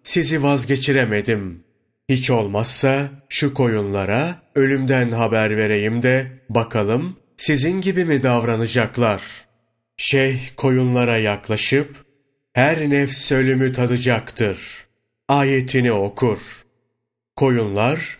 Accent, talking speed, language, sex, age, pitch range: native, 80 wpm, Turkish, male, 40-59, 115-140 Hz